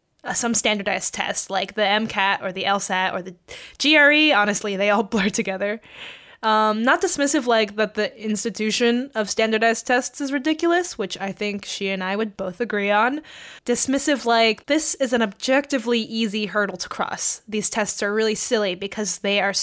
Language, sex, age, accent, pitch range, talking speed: English, female, 10-29, American, 205-255 Hz, 175 wpm